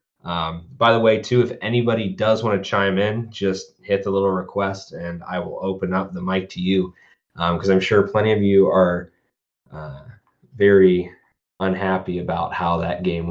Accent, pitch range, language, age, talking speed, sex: American, 95-120 Hz, English, 20-39, 185 wpm, male